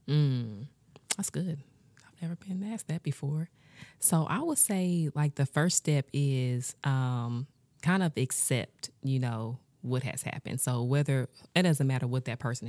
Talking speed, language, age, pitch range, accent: 165 wpm, English, 20-39, 125-150 Hz, American